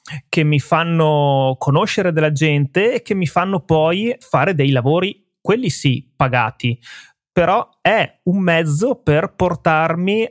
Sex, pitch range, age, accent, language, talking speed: male, 140-175 Hz, 30-49, native, Italian, 135 wpm